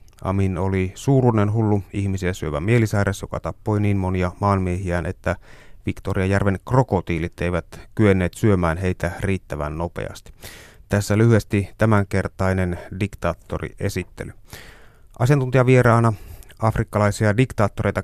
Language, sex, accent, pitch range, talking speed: Finnish, male, native, 95-110 Hz, 95 wpm